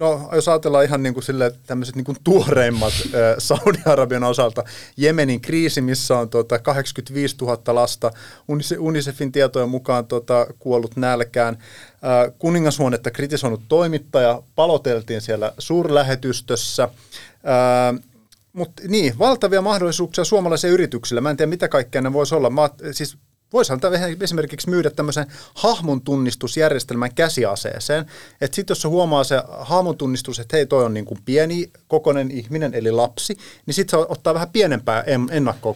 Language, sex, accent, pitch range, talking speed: Finnish, male, native, 120-155 Hz, 130 wpm